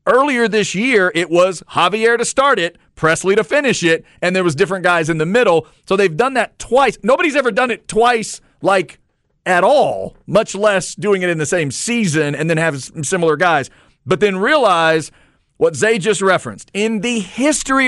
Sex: male